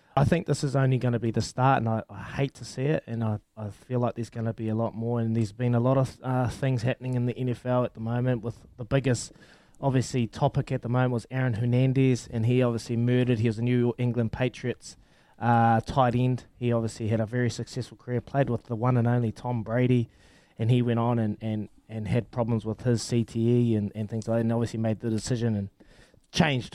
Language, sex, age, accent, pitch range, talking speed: English, male, 20-39, Australian, 115-135 Hz, 240 wpm